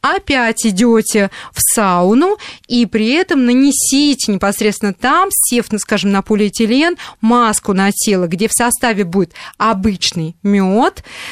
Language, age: Russian, 20-39